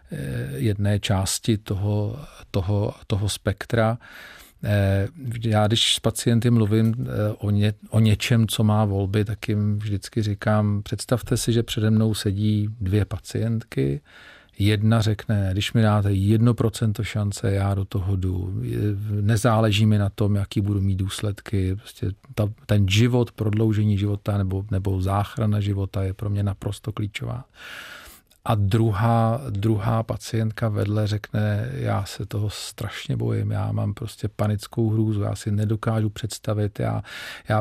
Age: 40-59